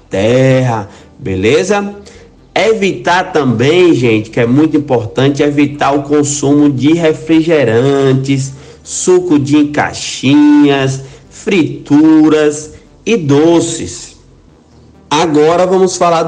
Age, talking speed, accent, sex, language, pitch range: 50-69, 85 wpm, Brazilian, male, Portuguese, 125-160 Hz